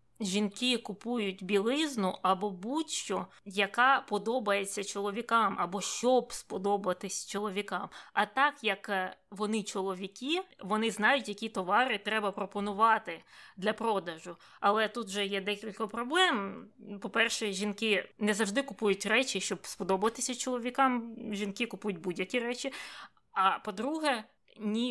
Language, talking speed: Ukrainian, 115 wpm